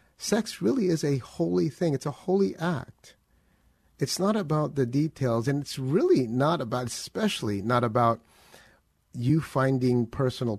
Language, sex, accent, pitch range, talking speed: English, male, American, 105-135 Hz, 145 wpm